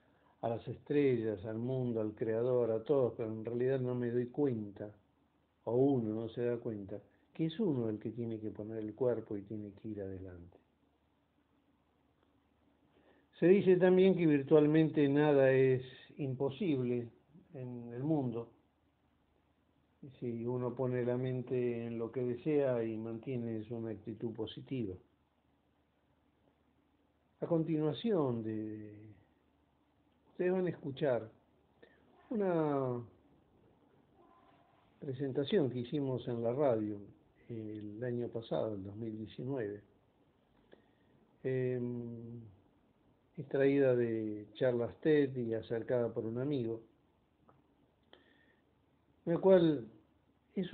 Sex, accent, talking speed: male, Argentinian, 110 wpm